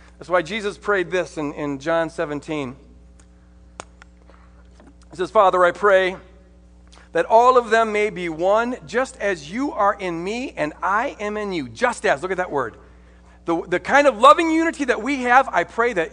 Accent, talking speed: American, 185 wpm